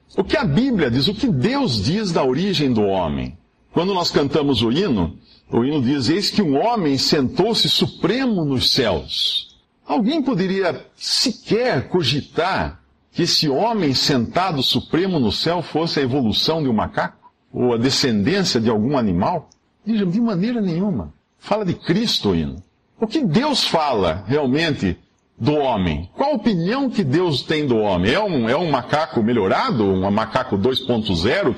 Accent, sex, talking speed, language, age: Brazilian, male, 160 wpm, Portuguese, 50-69